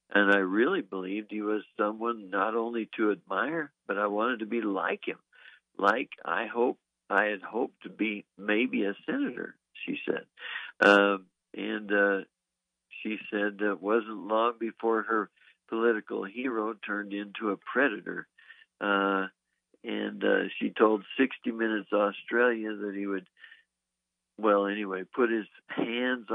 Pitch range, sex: 100-110 Hz, male